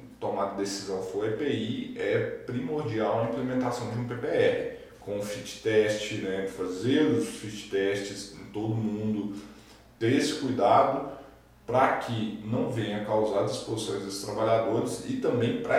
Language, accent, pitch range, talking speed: Portuguese, Brazilian, 105-130 Hz, 140 wpm